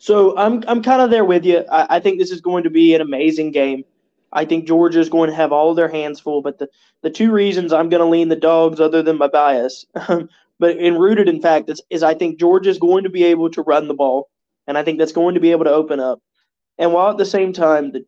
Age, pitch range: 20-39, 145-170 Hz